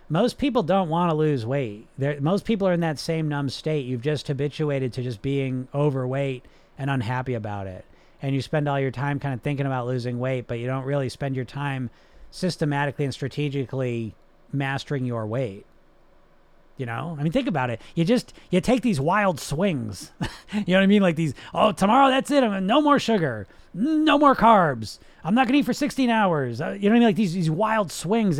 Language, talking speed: English, 215 wpm